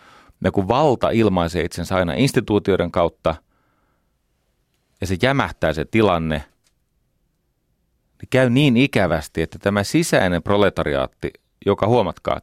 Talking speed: 105 wpm